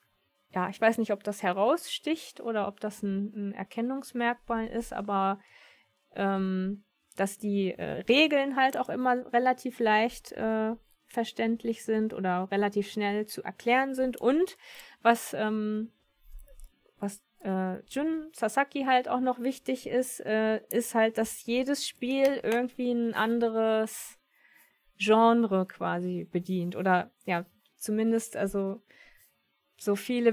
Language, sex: German, female